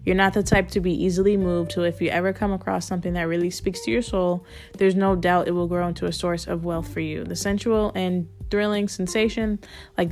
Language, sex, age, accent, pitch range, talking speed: English, female, 10-29, American, 165-200 Hz, 235 wpm